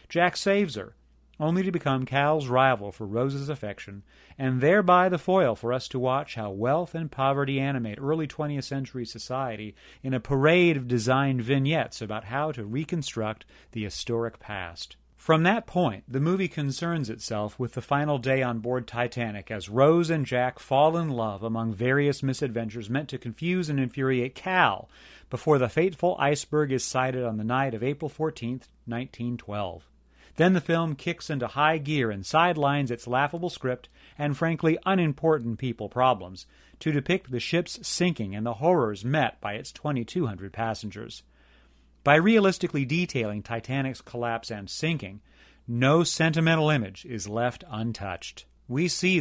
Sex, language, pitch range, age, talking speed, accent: male, English, 115-155 Hz, 40-59, 155 wpm, American